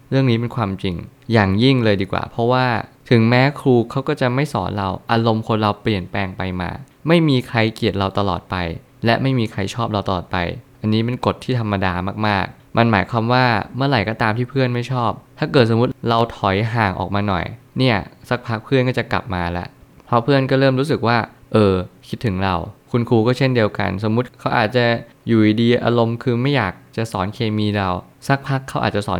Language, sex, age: Thai, male, 20-39